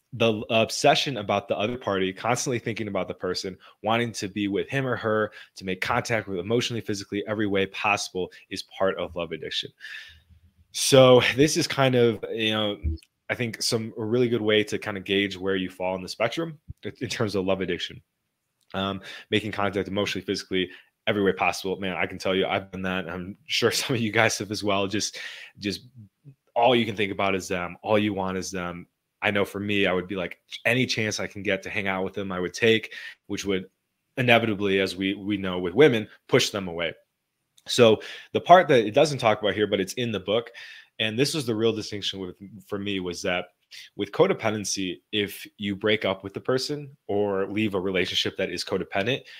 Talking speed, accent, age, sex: 210 wpm, American, 20-39, male